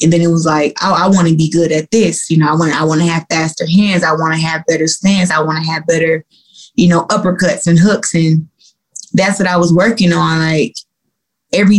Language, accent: English, American